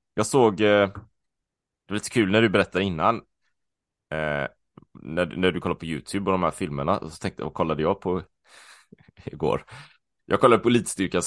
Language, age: Swedish, 20-39